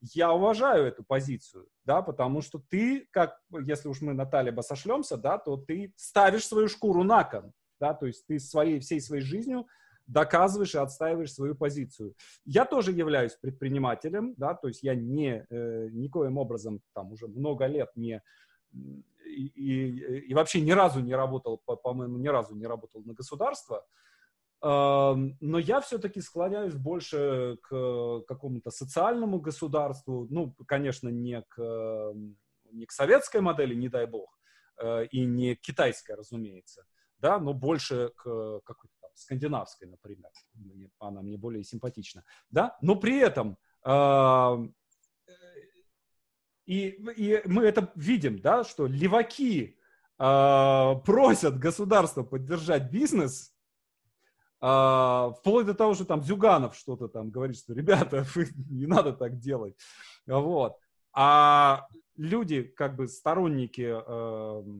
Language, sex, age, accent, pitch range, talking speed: Russian, male, 30-49, native, 120-175 Hz, 130 wpm